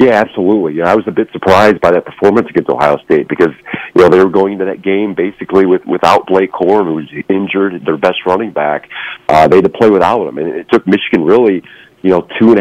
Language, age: English, 40-59